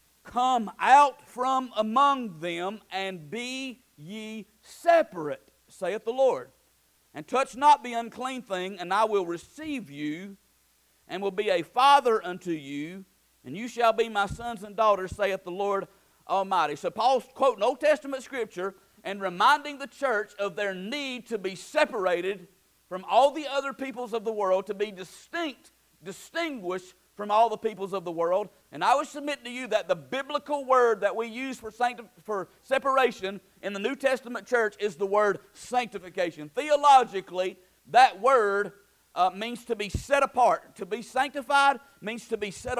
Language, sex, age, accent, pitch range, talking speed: English, male, 50-69, American, 195-265 Hz, 165 wpm